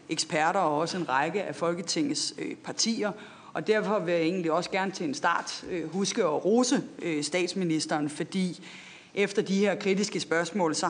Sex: female